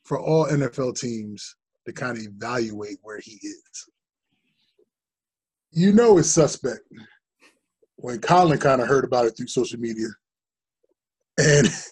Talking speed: 130 wpm